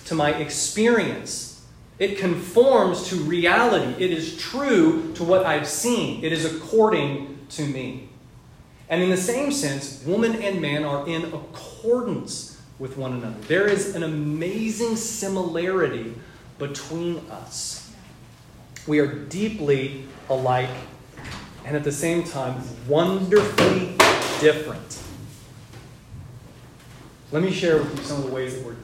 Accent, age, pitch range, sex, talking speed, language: American, 30-49, 130-175 Hz, male, 130 wpm, English